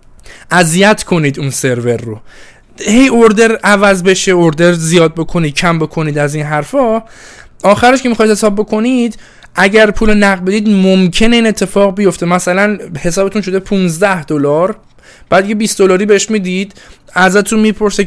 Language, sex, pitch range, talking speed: Persian, male, 145-200 Hz, 140 wpm